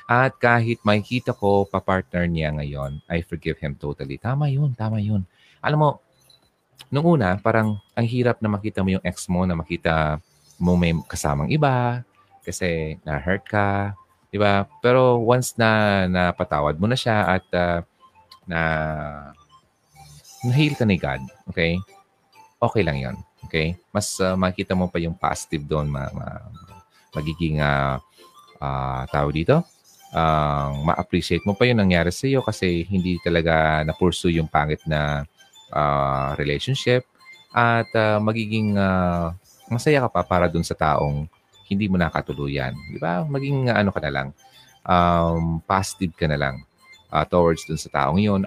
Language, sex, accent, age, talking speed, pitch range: Filipino, male, native, 30-49, 155 wpm, 80-110 Hz